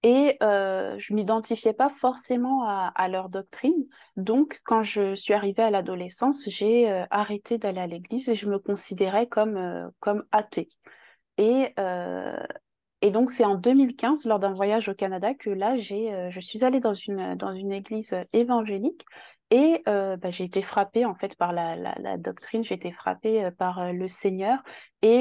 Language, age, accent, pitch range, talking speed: French, 20-39, French, 190-235 Hz, 185 wpm